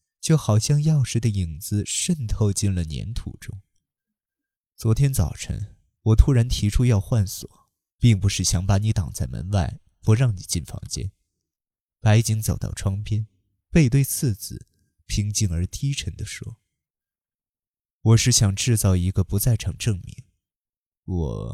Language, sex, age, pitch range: Chinese, male, 20-39, 95-120 Hz